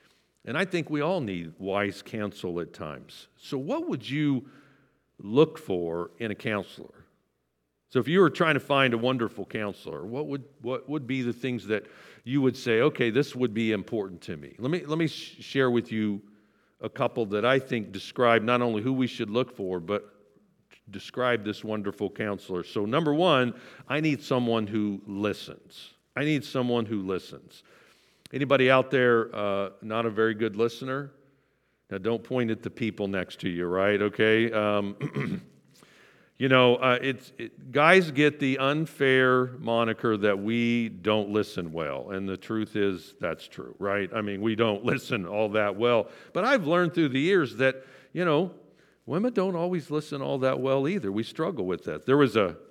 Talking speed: 180 wpm